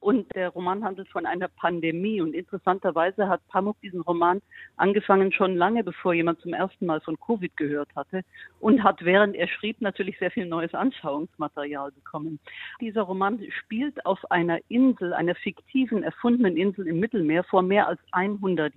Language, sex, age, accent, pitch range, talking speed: German, female, 50-69, German, 170-215 Hz, 165 wpm